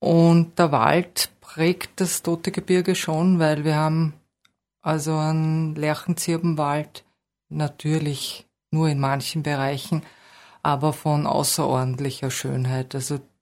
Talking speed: 105 wpm